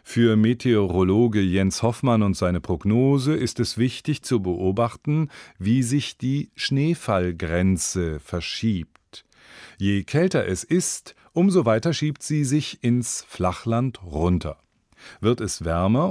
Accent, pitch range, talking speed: German, 90-130 Hz, 120 wpm